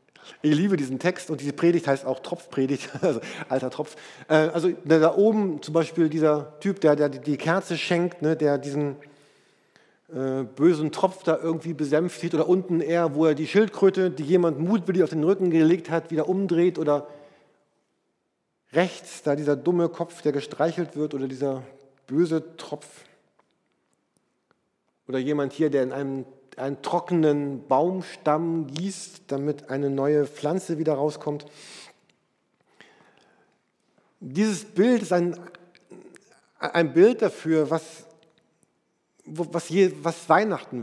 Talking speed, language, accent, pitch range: 130 wpm, German, German, 145-175 Hz